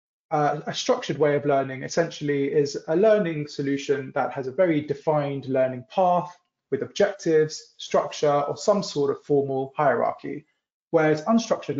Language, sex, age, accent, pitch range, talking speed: English, male, 20-39, British, 135-165 Hz, 145 wpm